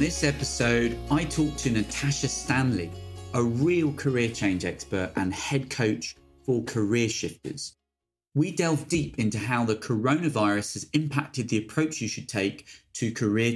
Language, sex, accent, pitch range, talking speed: English, male, British, 105-140 Hz, 150 wpm